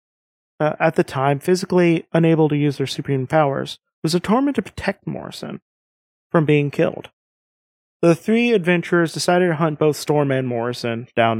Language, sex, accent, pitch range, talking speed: English, male, American, 135-165 Hz, 165 wpm